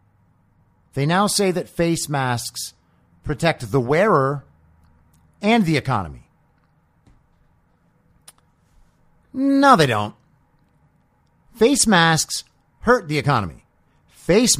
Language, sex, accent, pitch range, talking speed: English, male, American, 125-180 Hz, 85 wpm